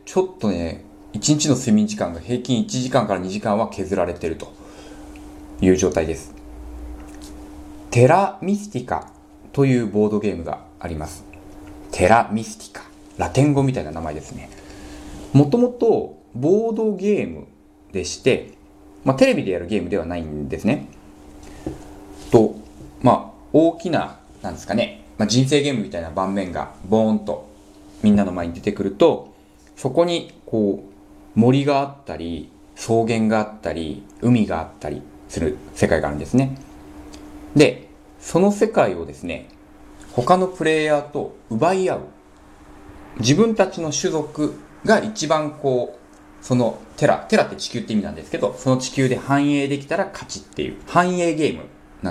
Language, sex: Japanese, male